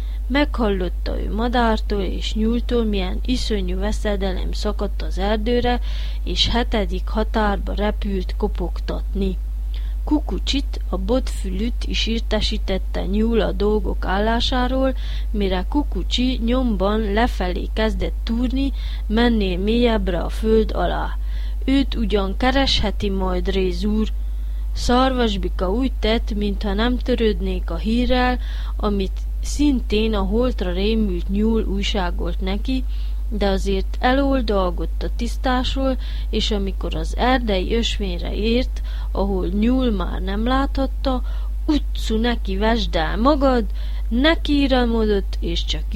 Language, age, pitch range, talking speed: Hungarian, 20-39, 190-240 Hz, 105 wpm